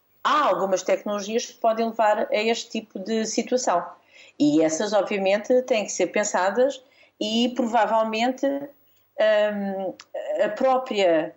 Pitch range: 175-240 Hz